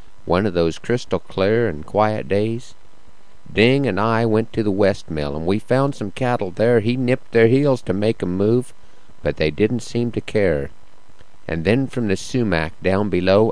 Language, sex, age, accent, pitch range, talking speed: English, male, 50-69, American, 95-115 Hz, 180 wpm